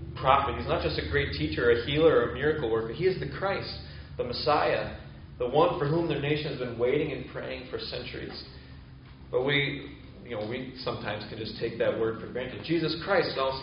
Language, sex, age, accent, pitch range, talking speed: English, male, 30-49, American, 115-145 Hz, 220 wpm